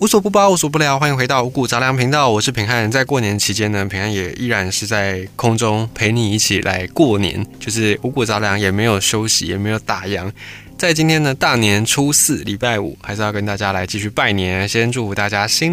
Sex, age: male, 20-39